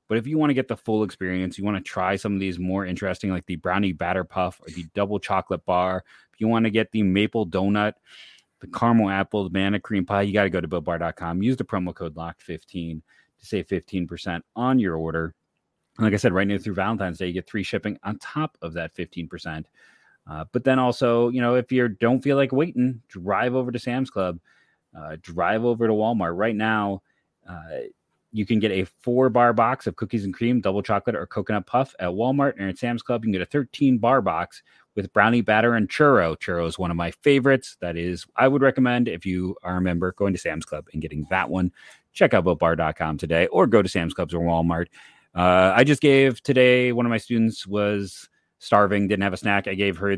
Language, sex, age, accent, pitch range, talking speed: English, male, 30-49, American, 90-120 Hz, 230 wpm